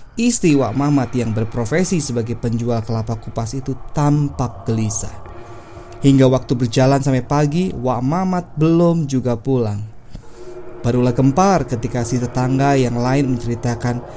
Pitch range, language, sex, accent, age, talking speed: 115-140 Hz, Indonesian, male, native, 20-39, 125 wpm